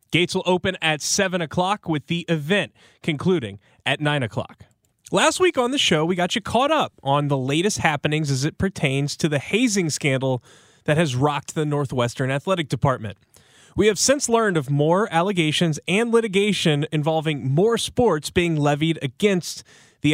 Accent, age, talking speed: American, 20-39, 170 wpm